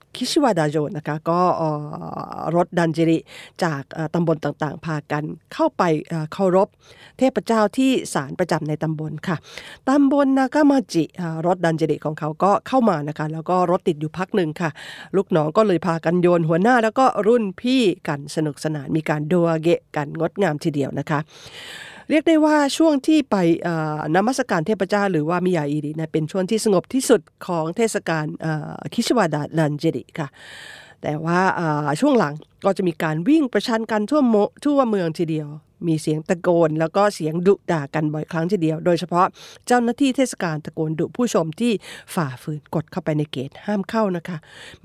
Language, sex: Japanese, female